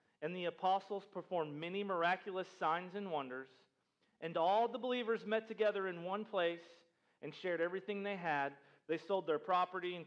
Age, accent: 40-59, American